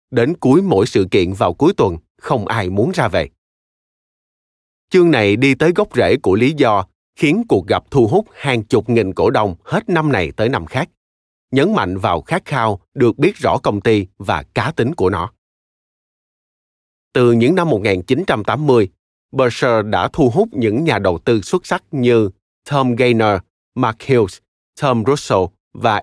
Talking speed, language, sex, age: 175 wpm, Vietnamese, male, 20-39